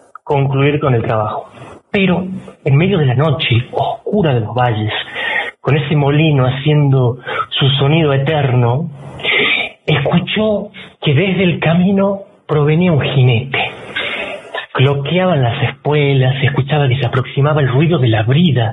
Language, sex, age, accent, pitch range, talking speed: Spanish, male, 40-59, Argentinian, 130-165 Hz, 135 wpm